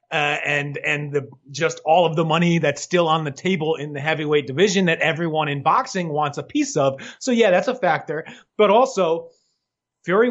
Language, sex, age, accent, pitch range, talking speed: English, male, 30-49, American, 150-195 Hz, 200 wpm